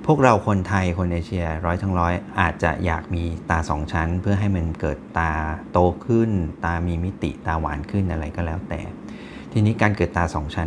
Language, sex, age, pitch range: Thai, male, 30-49, 80-100 Hz